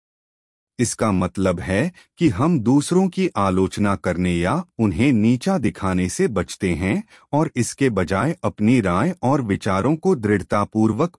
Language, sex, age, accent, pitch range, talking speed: Hindi, male, 30-49, native, 95-140 Hz, 135 wpm